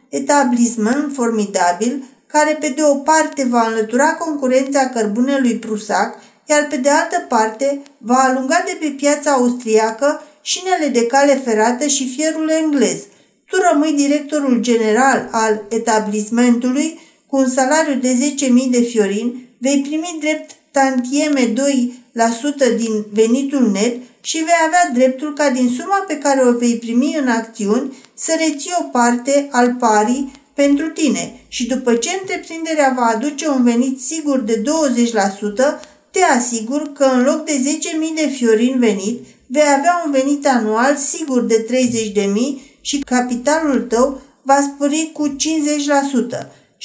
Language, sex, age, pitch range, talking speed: Romanian, female, 50-69, 235-295 Hz, 140 wpm